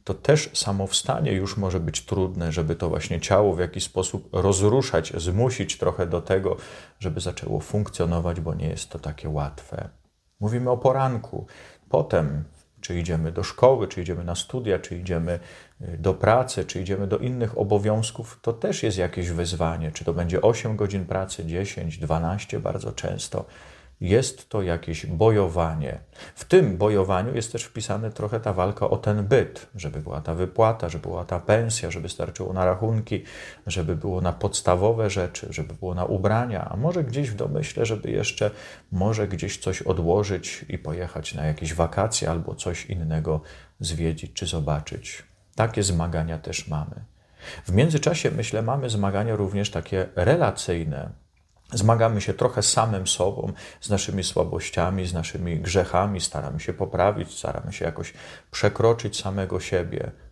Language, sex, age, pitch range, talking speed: Polish, male, 40-59, 85-105 Hz, 155 wpm